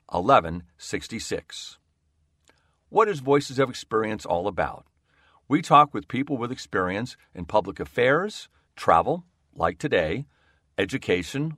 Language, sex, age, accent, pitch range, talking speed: English, male, 50-69, American, 85-135 Hz, 110 wpm